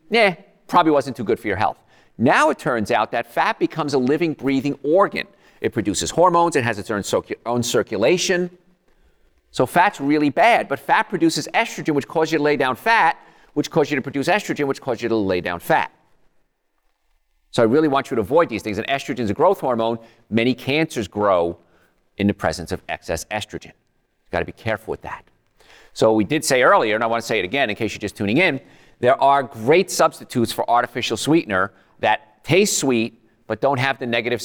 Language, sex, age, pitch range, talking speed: English, male, 40-59, 110-150 Hz, 205 wpm